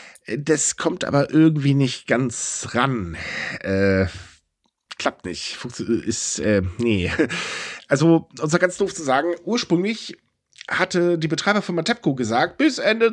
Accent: German